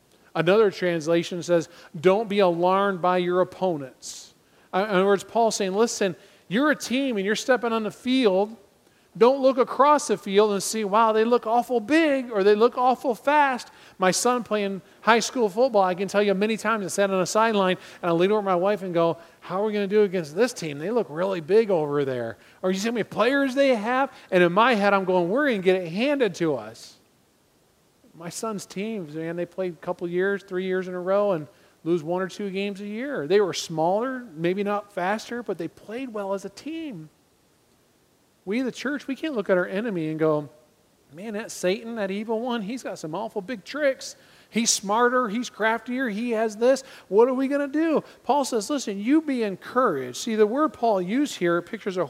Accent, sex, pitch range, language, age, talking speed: American, male, 185-240 Hz, English, 40-59, 220 wpm